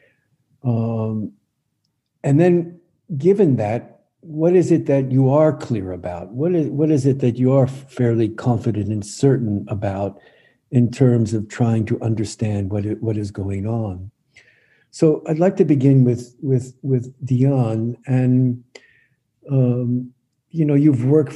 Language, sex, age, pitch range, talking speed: English, male, 60-79, 115-135 Hz, 145 wpm